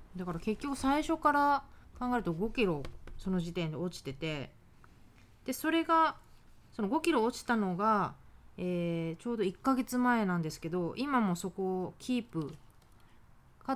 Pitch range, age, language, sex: 160-220 Hz, 30-49, Japanese, female